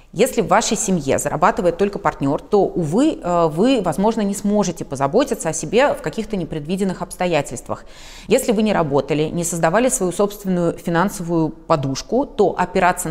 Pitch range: 155-200 Hz